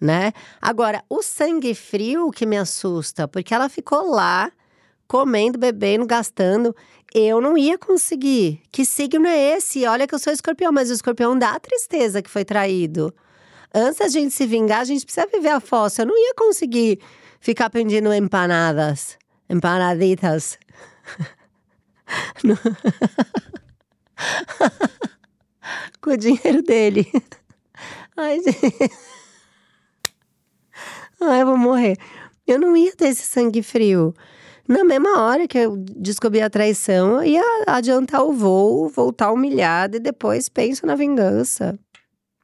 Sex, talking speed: female, 130 wpm